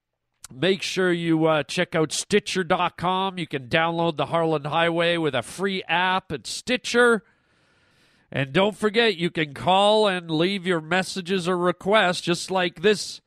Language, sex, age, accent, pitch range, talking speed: English, male, 40-59, American, 155-190 Hz, 155 wpm